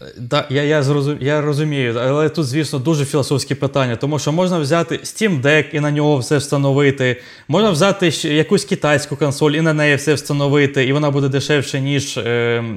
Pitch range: 135-165 Hz